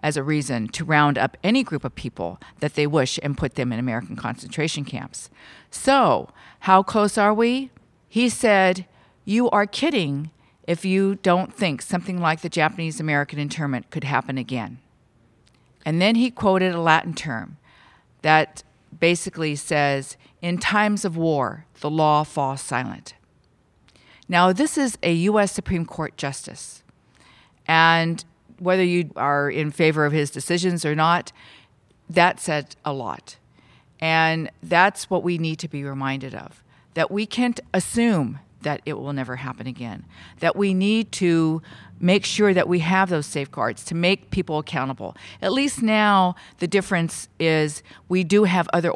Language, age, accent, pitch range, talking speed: English, 50-69, American, 145-185 Hz, 155 wpm